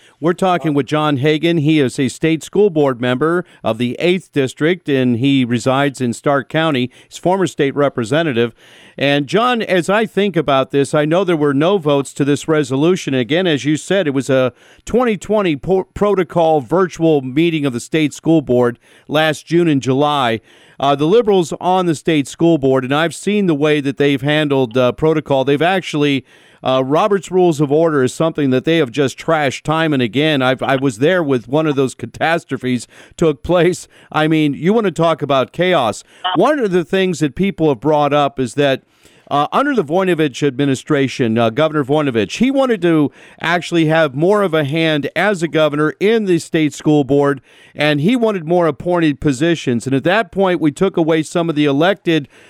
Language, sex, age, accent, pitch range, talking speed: English, male, 50-69, American, 140-170 Hz, 195 wpm